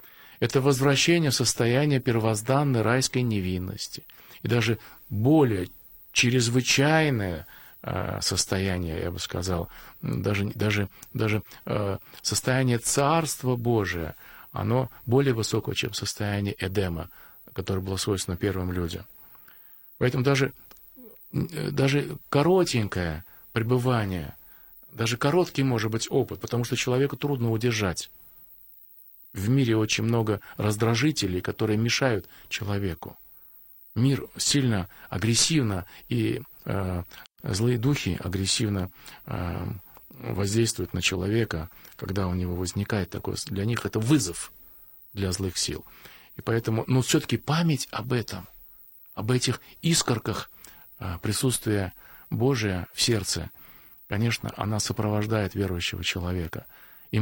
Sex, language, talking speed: male, Russian, 105 wpm